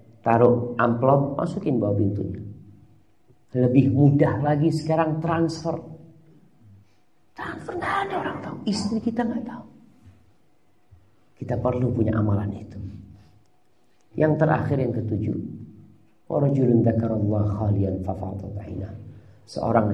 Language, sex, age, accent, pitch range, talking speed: Indonesian, male, 50-69, native, 105-155 Hz, 85 wpm